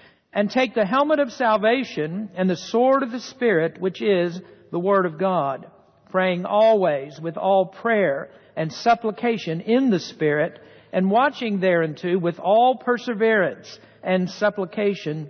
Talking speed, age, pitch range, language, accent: 140 wpm, 60-79, 165-215 Hz, English, American